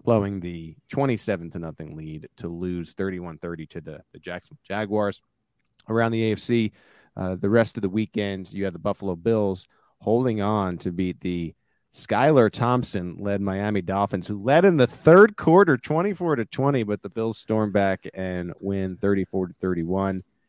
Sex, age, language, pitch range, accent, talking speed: male, 30-49, English, 95-115 Hz, American, 170 wpm